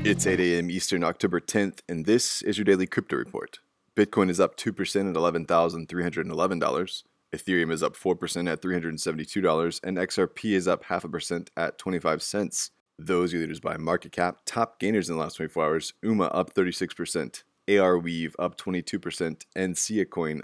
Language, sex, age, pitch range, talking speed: English, male, 20-39, 85-95 Hz, 175 wpm